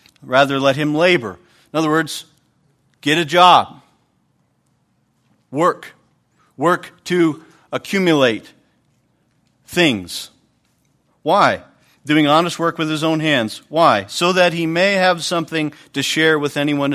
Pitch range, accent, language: 130-170 Hz, American, English